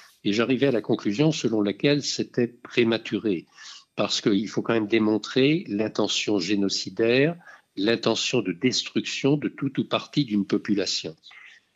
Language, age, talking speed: French, 60-79, 135 wpm